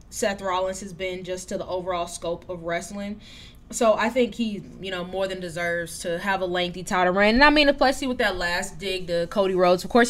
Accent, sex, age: American, female, 10-29